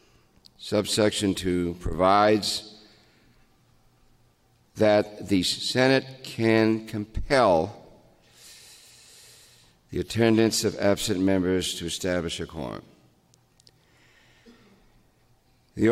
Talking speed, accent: 70 wpm, American